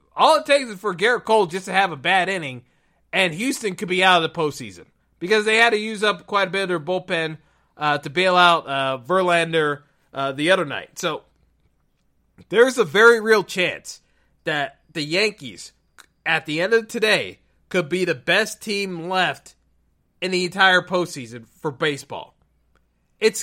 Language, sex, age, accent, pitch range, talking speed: English, male, 30-49, American, 160-215 Hz, 180 wpm